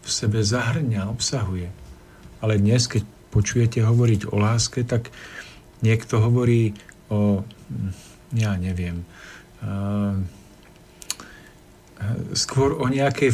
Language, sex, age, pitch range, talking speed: Slovak, male, 50-69, 105-120 Hz, 95 wpm